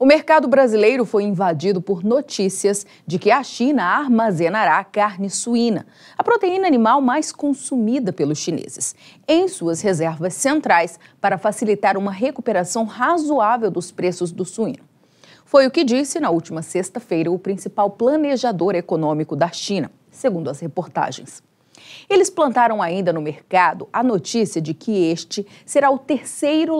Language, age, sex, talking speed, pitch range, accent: Portuguese, 40-59, female, 140 wpm, 170-245 Hz, Brazilian